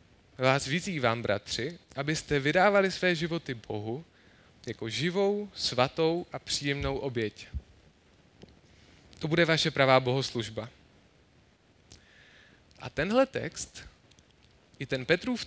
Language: Czech